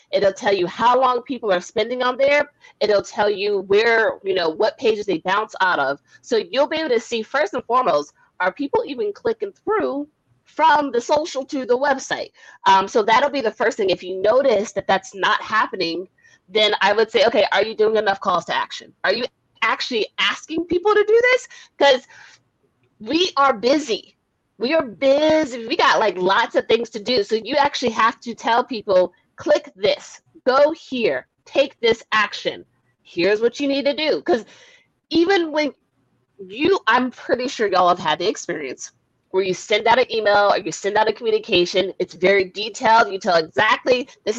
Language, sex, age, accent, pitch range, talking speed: English, female, 30-49, American, 210-320 Hz, 190 wpm